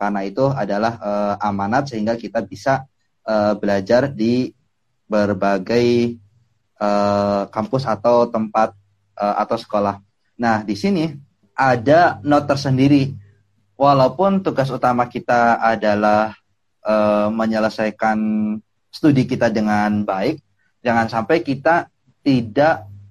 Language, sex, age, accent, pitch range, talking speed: Indonesian, male, 20-39, native, 105-130 Hz, 105 wpm